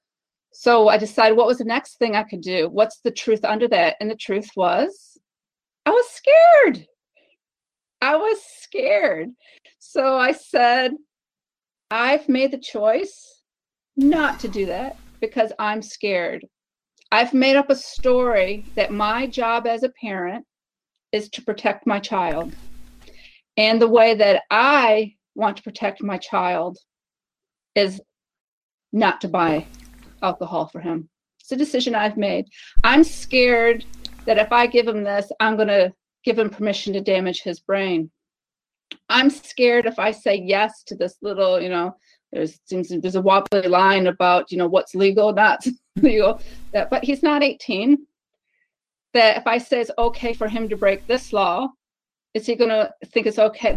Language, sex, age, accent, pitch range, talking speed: English, female, 40-59, American, 200-255 Hz, 160 wpm